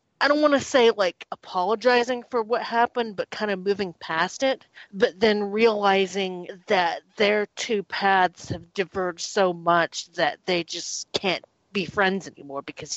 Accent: American